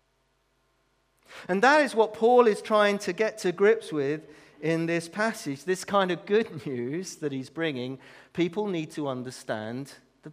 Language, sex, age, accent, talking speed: English, male, 40-59, British, 165 wpm